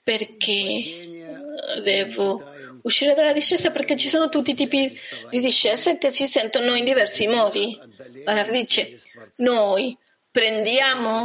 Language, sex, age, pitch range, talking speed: Italian, female, 30-49, 215-290 Hz, 125 wpm